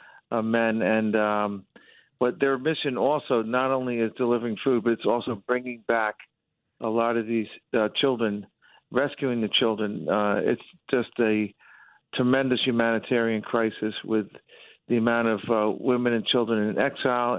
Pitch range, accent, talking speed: 110-125 Hz, American, 150 wpm